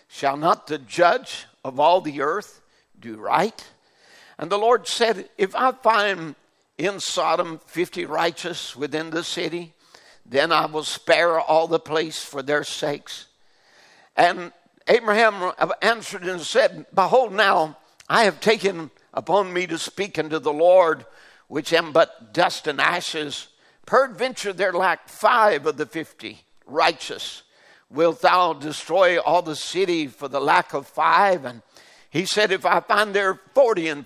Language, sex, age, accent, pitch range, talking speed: English, male, 60-79, American, 160-205 Hz, 150 wpm